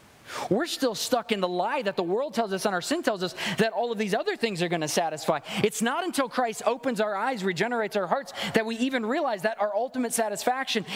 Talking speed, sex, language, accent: 240 wpm, male, English, American